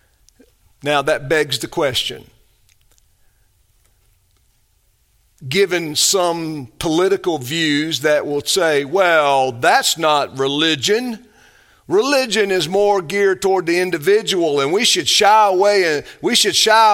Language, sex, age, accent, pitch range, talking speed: English, male, 50-69, American, 150-230 Hz, 115 wpm